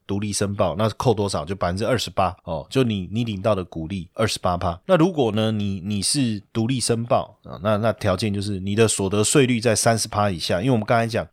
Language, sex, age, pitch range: Chinese, male, 30-49, 95-125 Hz